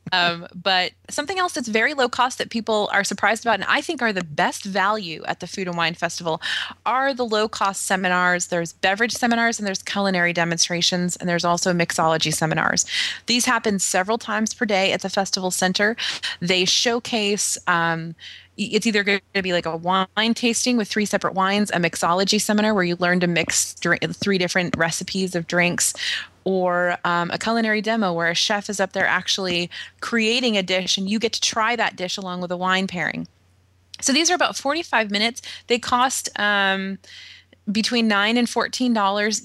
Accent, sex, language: American, female, English